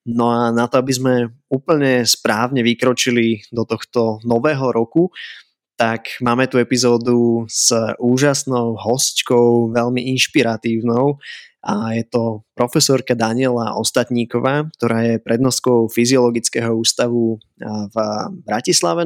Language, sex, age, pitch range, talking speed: Slovak, male, 20-39, 115-130 Hz, 110 wpm